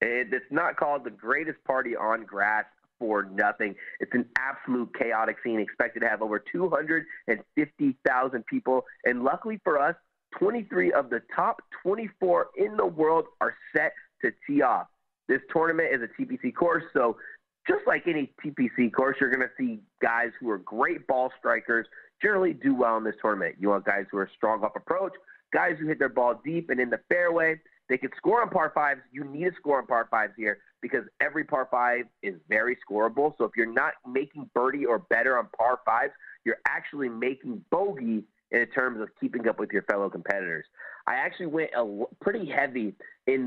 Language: English